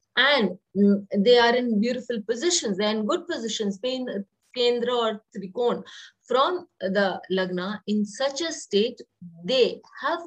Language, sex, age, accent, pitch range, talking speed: English, female, 20-39, Indian, 205-270 Hz, 135 wpm